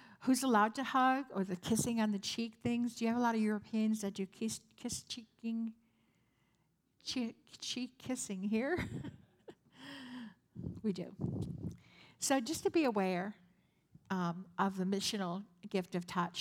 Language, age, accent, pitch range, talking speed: English, 60-79, American, 180-220 Hz, 150 wpm